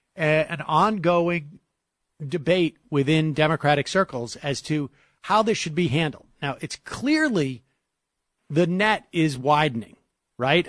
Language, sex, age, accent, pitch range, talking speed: English, male, 50-69, American, 140-175 Hz, 120 wpm